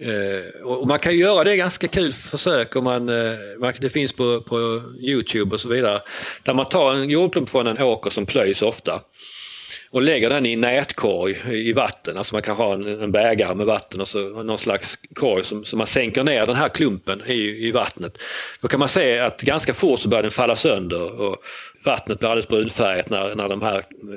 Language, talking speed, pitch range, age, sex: Swedish, 210 wpm, 105-135 Hz, 30-49, male